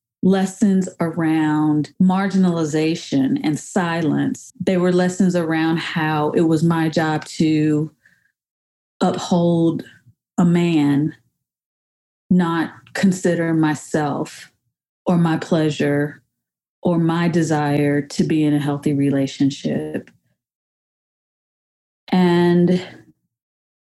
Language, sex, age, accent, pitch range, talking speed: English, female, 30-49, American, 150-185 Hz, 85 wpm